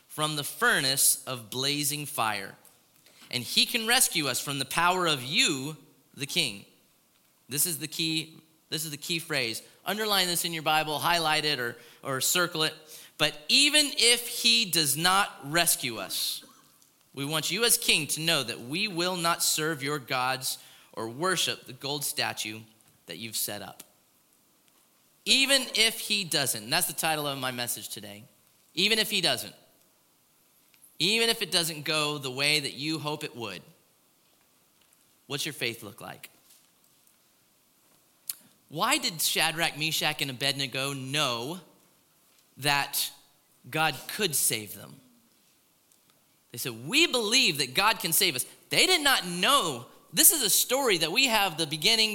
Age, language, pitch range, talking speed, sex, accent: 30-49, English, 135-185 Hz, 155 wpm, male, American